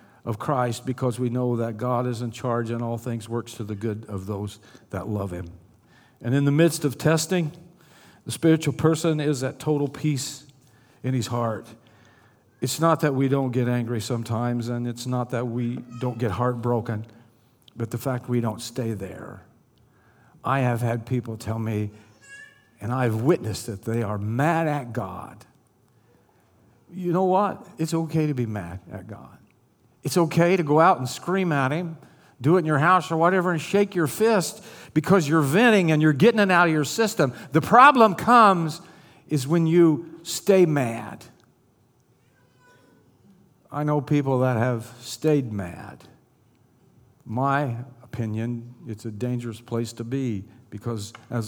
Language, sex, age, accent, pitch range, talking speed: English, male, 50-69, American, 115-155 Hz, 165 wpm